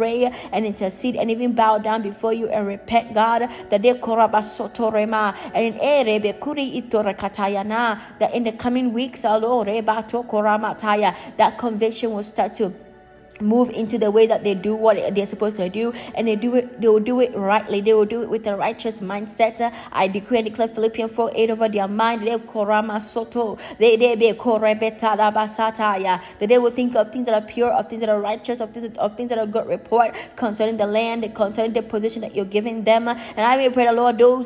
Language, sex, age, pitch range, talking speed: English, female, 20-39, 215-245 Hz, 175 wpm